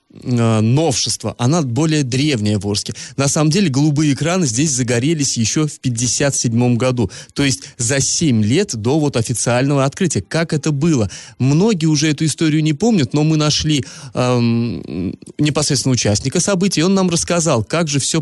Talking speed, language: 165 wpm, Russian